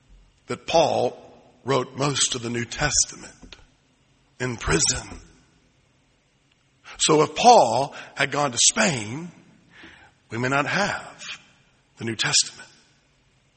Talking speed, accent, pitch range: 105 wpm, American, 130-170 Hz